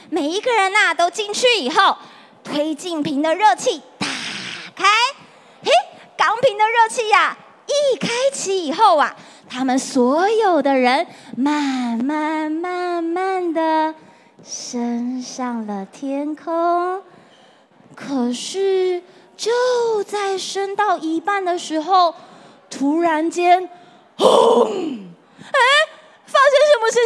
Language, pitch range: Chinese, 315-420 Hz